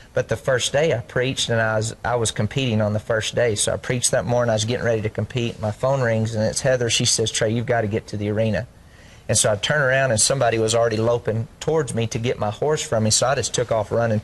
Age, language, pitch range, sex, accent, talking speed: 30-49, English, 110-125 Hz, male, American, 280 wpm